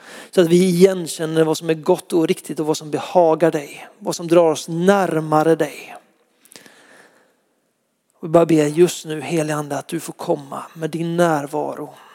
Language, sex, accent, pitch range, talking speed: Swedish, male, native, 160-205 Hz, 180 wpm